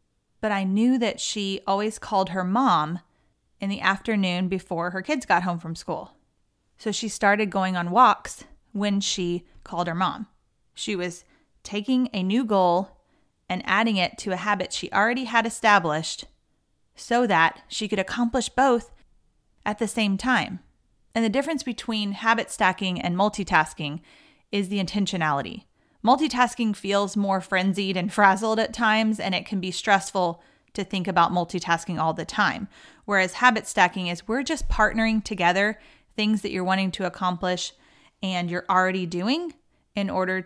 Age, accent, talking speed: 30-49, American, 160 wpm